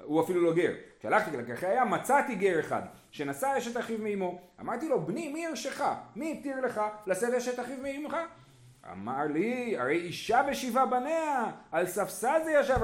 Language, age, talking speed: Hebrew, 30-49, 170 wpm